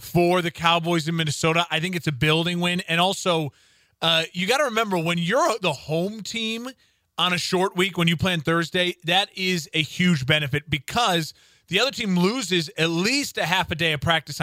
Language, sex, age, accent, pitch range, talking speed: English, male, 30-49, American, 155-190 Hz, 210 wpm